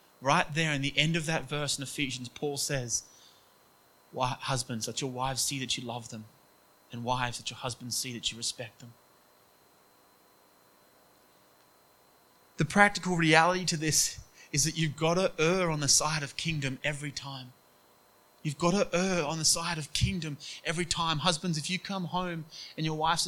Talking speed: 175 wpm